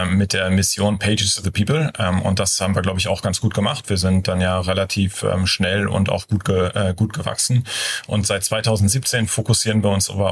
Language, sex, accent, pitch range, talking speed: German, male, German, 95-110 Hz, 205 wpm